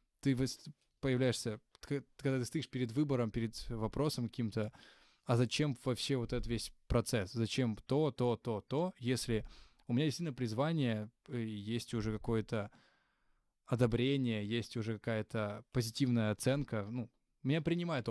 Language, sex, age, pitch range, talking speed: Ukrainian, male, 20-39, 115-135 Hz, 130 wpm